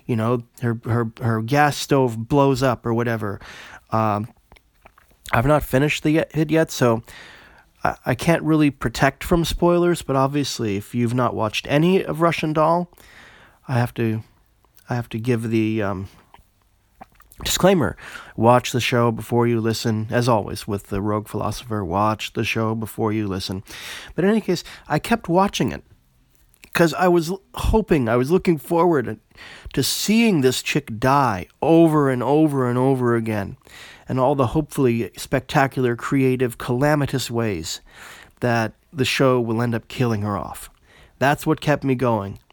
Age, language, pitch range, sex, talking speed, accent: 30-49, English, 115-150 Hz, male, 160 wpm, American